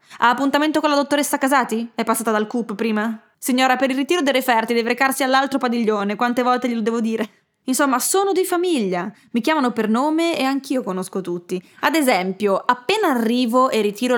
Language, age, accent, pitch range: Italian, 20-39, native, 205-260 Hz